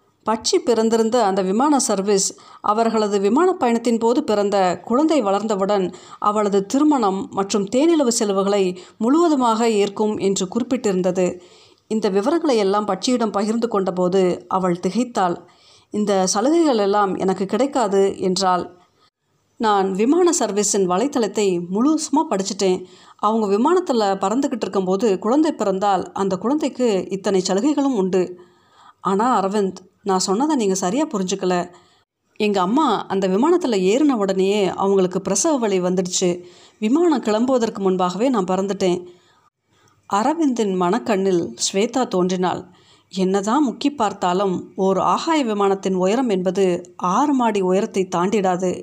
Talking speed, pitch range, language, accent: 110 wpm, 185-230 Hz, Tamil, native